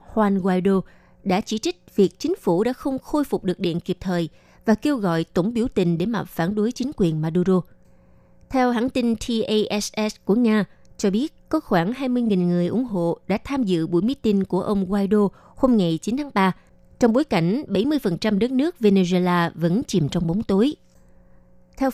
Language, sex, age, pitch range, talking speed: Vietnamese, female, 20-39, 180-230 Hz, 190 wpm